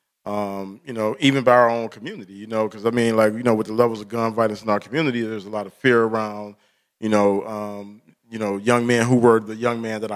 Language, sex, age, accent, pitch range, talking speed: English, male, 40-59, American, 105-125 Hz, 260 wpm